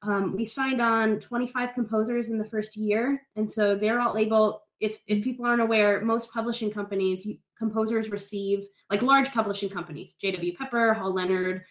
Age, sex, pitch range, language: 10-29, female, 205-240 Hz, English